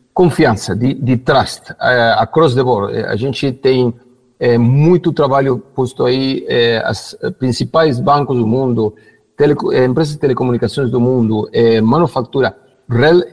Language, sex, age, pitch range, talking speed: Portuguese, male, 50-69, 120-145 Hz, 140 wpm